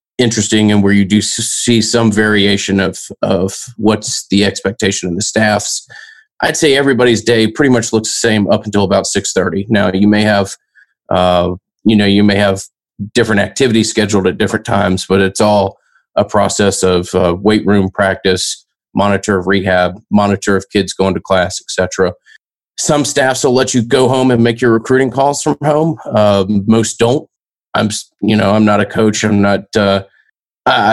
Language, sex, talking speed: English, male, 180 wpm